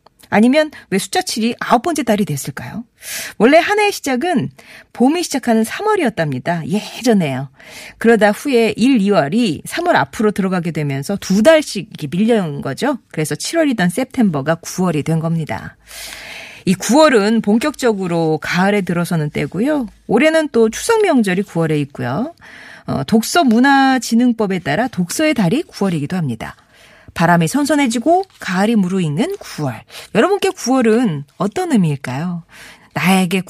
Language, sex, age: Korean, female, 40-59